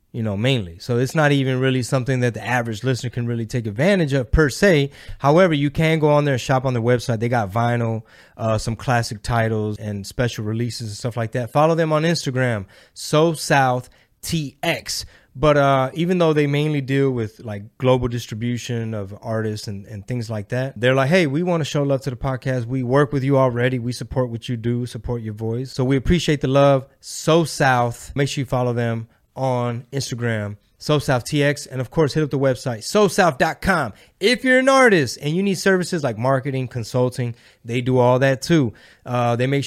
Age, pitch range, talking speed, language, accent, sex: 20-39, 120-145 Hz, 210 wpm, English, American, male